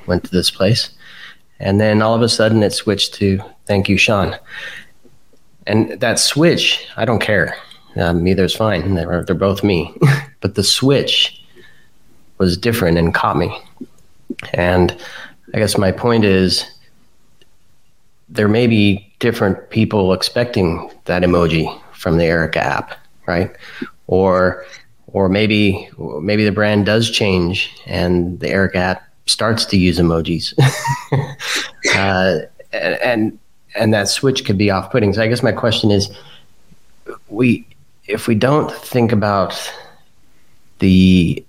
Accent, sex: American, male